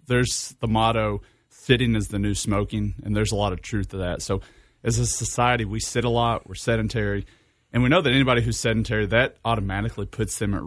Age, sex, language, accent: 30-49, male, English, American